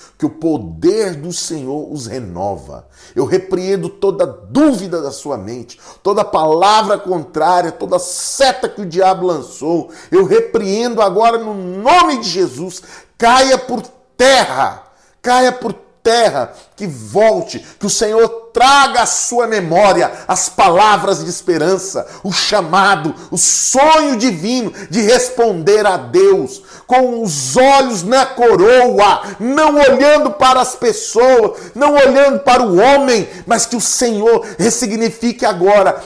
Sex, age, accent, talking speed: male, 40-59, Brazilian, 130 wpm